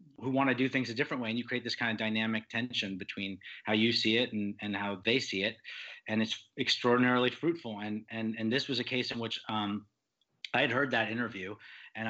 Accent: American